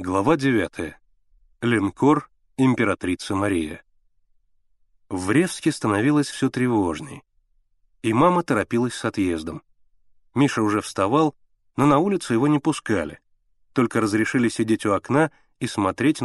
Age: 30-49